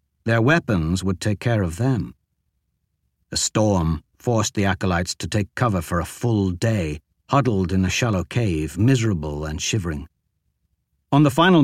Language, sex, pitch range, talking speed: English, male, 85-135 Hz, 155 wpm